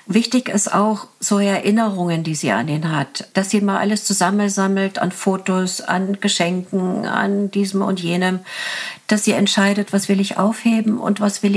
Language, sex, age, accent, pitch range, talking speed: German, female, 50-69, German, 160-205 Hz, 180 wpm